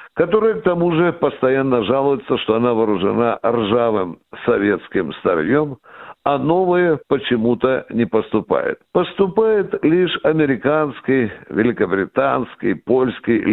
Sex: male